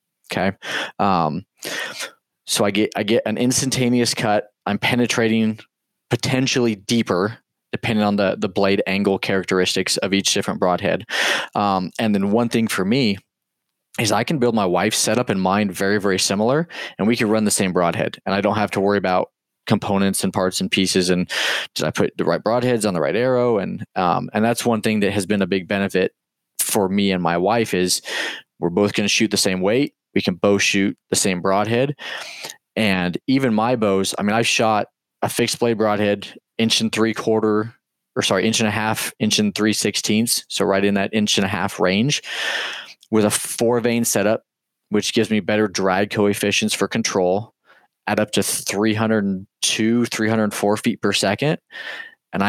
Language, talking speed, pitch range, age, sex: English, 185 wpm, 100-115 Hz, 20-39, male